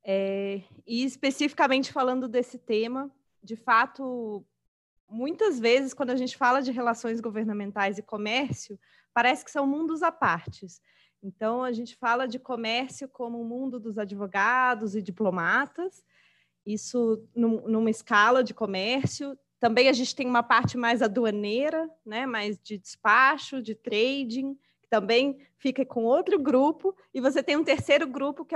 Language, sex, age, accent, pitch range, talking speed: Portuguese, female, 20-39, Brazilian, 220-270 Hz, 150 wpm